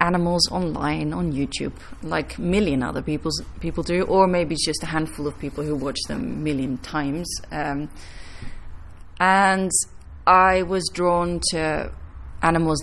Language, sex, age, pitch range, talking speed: English, female, 30-49, 125-170 Hz, 145 wpm